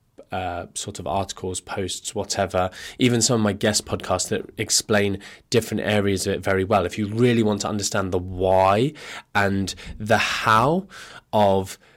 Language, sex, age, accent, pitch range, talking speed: English, male, 20-39, British, 95-115 Hz, 160 wpm